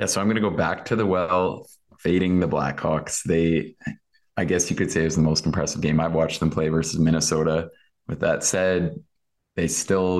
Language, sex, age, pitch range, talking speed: English, male, 20-39, 80-90 Hz, 210 wpm